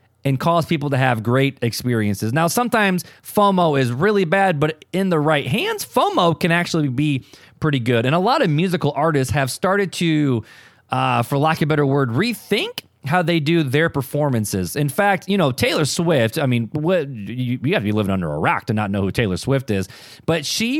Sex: male